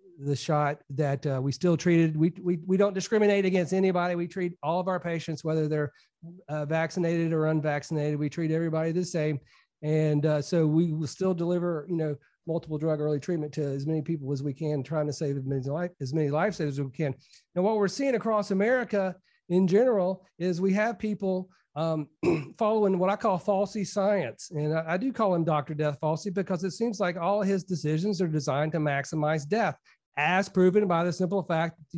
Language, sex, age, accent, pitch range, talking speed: English, male, 40-59, American, 155-190 Hz, 210 wpm